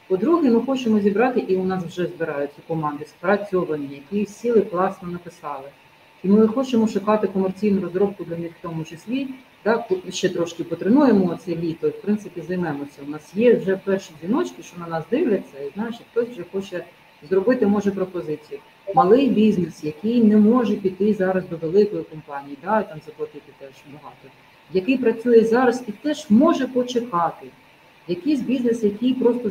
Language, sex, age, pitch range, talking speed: Ukrainian, female, 40-59, 165-230 Hz, 160 wpm